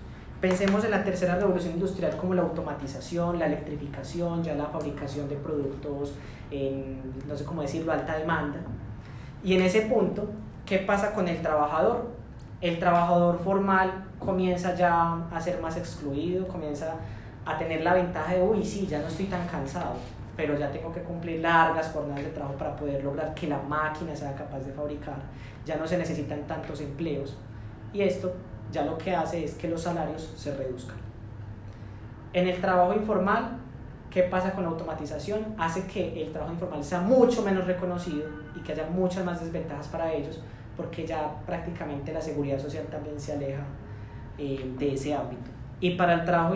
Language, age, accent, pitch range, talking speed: Spanish, 20-39, Colombian, 145-175 Hz, 175 wpm